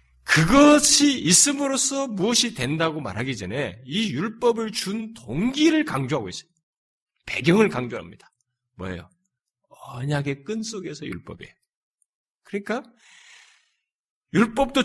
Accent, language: native, Korean